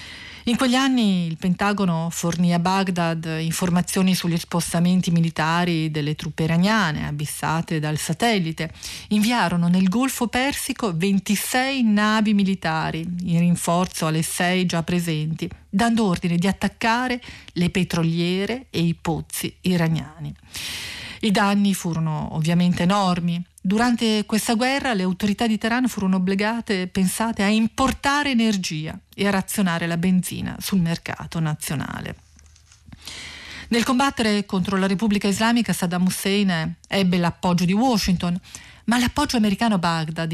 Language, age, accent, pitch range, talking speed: Italian, 40-59, native, 170-210 Hz, 125 wpm